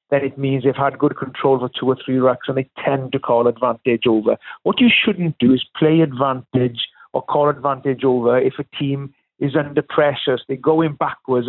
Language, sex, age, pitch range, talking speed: English, male, 50-69, 125-155 Hz, 210 wpm